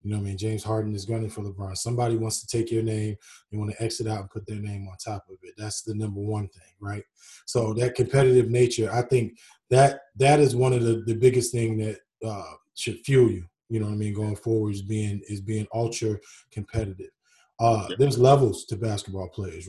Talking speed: 230 wpm